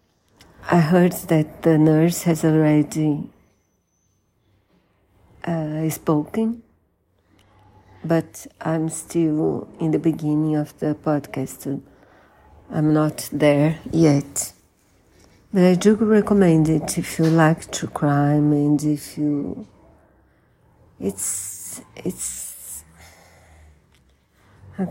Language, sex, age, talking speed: Portuguese, female, 50-69, 90 wpm